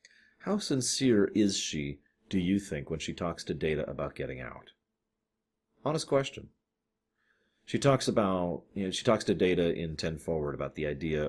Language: English